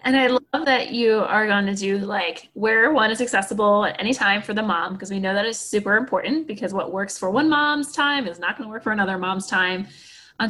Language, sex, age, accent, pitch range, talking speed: English, female, 20-39, American, 190-245 Hz, 250 wpm